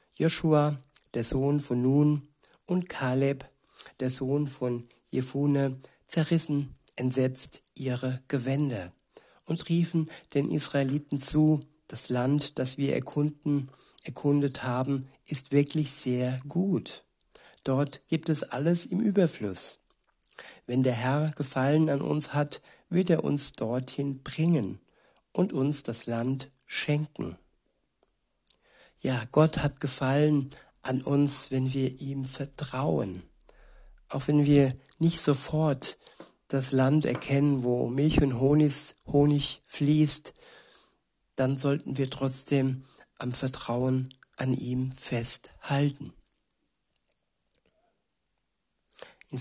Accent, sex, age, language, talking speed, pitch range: German, male, 60-79, German, 105 wpm, 130-150 Hz